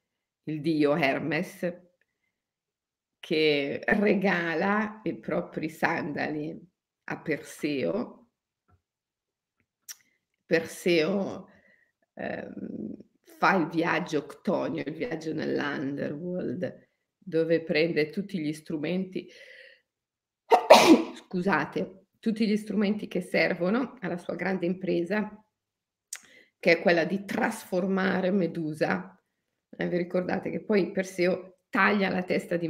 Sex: female